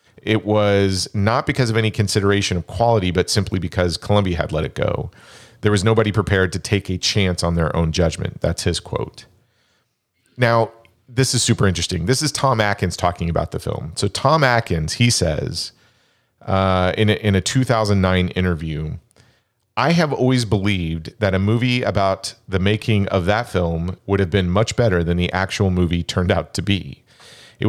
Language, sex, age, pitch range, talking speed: English, male, 40-59, 90-115 Hz, 180 wpm